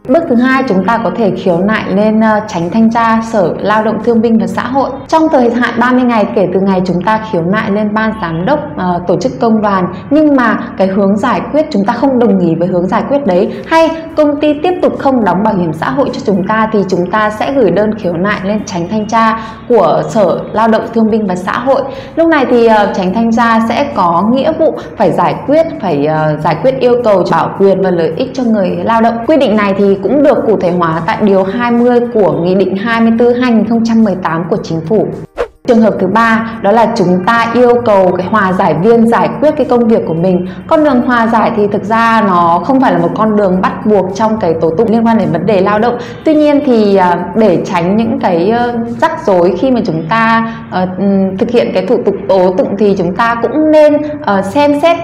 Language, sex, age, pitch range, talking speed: Vietnamese, female, 20-39, 190-240 Hz, 240 wpm